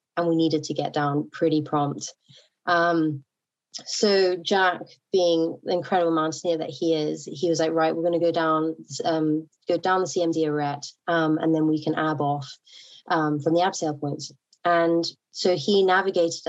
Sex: female